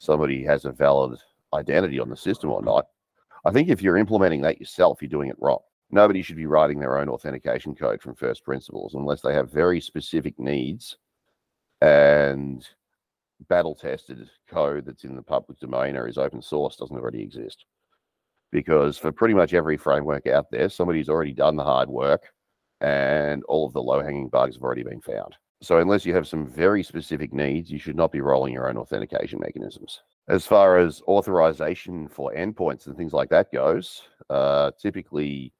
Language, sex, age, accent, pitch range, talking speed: English, male, 40-59, Australian, 70-85 Hz, 180 wpm